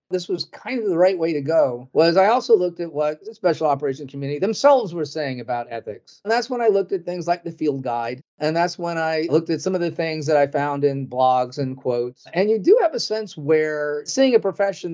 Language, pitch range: English, 145-185 Hz